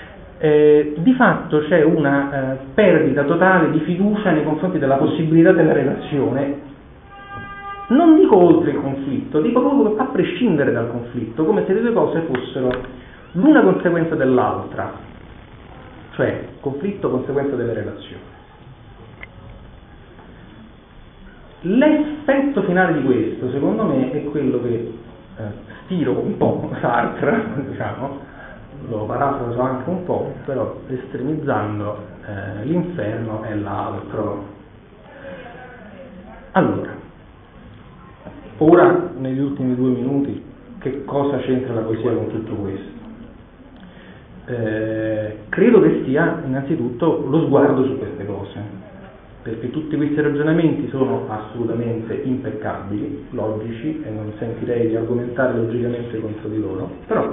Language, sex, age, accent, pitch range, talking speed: Italian, male, 40-59, native, 110-150 Hz, 115 wpm